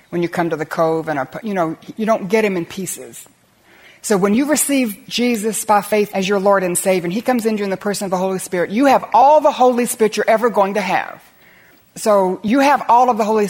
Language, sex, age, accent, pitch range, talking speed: English, female, 60-79, American, 190-245 Hz, 260 wpm